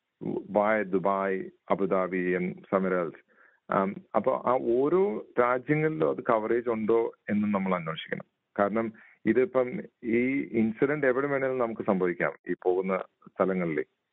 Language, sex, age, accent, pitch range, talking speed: Malayalam, male, 40-59, native, 100-120 Hz, 120 wpm